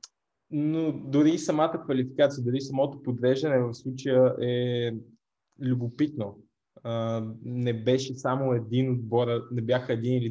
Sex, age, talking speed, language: male, 20-39, 115 wpm, Bulgarian